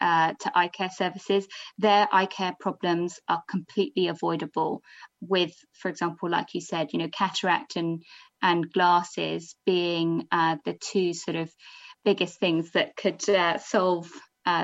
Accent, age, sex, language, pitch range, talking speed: British, 20-39, female, English, 175-205 Hz, 150 wpm